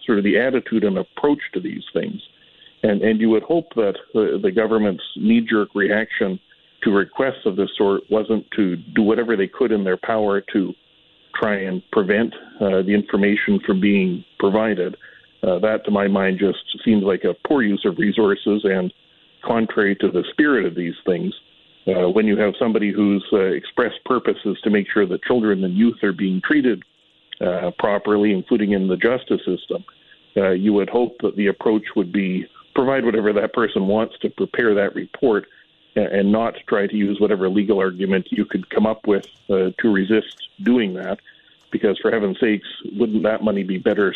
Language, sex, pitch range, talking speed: English, male, 100-110 Hz, 185 wpm